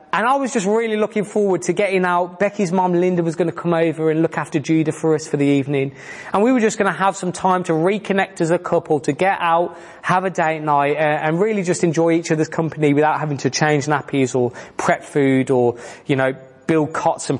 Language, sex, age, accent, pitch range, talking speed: English, male, 20-39, British, 150-205 Hz, 240 wpm